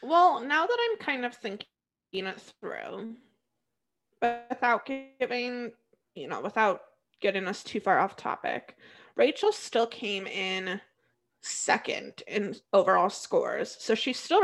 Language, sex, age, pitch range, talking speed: English, female, 20-39, 195-235 Hz, 135 wpm